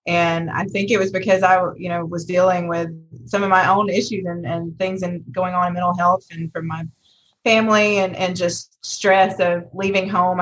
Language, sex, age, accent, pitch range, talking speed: English, female, 20-39, American, 175-200 Hz, 215 wpm